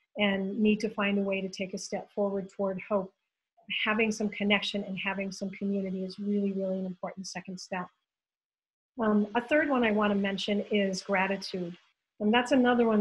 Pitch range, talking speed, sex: 195-215 Hz, 185 wpm, female